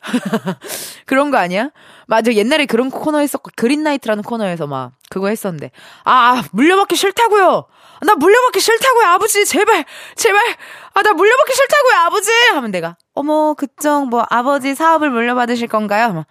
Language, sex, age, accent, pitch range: Korean, female, 20-39, native, 190-300 Hz